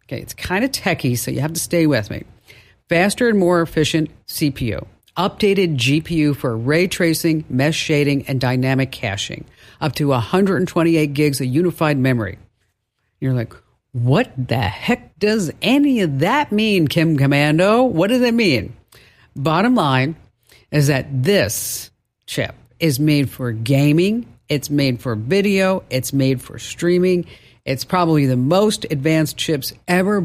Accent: American